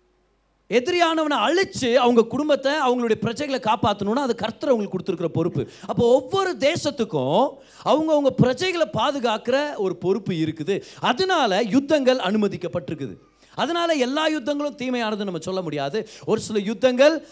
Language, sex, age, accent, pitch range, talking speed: Tamil, male, 30-49, native, 180-260 Hz, 115 wpm